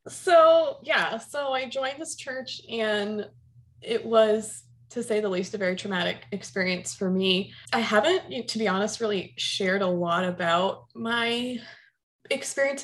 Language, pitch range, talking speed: English, 180-225 Hz, 150 wpm